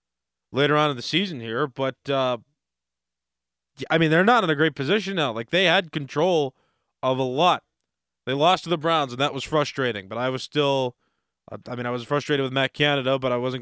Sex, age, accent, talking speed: male, 20-39, American, 210 wpm